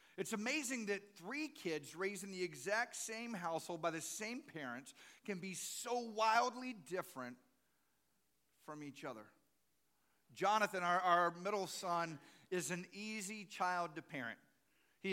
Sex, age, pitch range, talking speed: male, 50-69, 155-210 Hz, 140 wpm